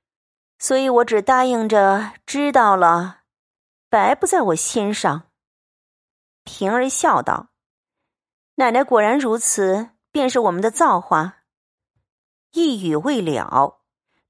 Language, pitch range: Chinese, 185-275 Hz